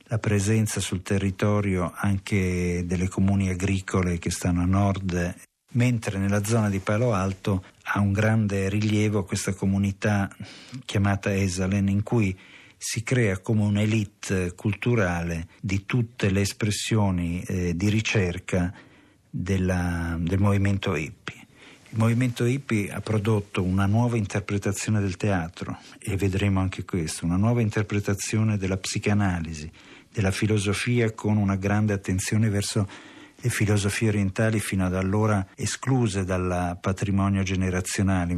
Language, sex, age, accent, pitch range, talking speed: Italian, male, 50-69, native, 95-110 Hz, 125 wpm